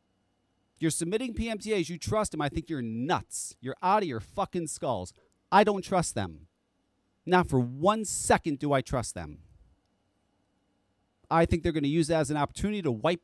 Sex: male